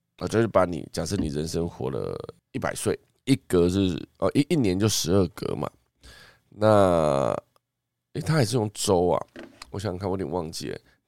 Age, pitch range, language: 20-39, 80-105 Hz, Chinese